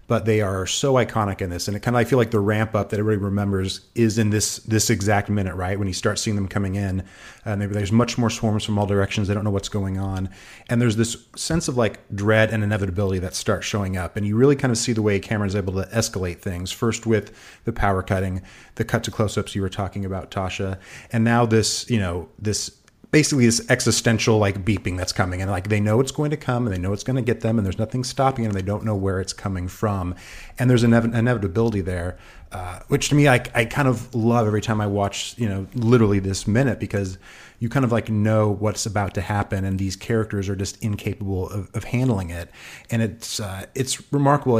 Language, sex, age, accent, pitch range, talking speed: English, male, 30-49, American, 95-115 Hz, 240 wpm